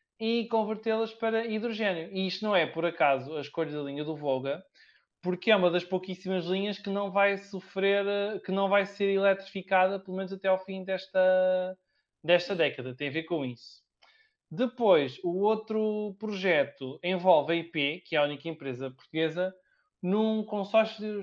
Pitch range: 165-210 Hz